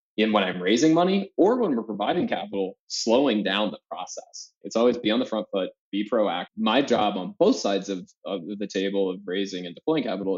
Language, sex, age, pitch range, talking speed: English, male, 20-39, 100-125 Hz, 215 wpm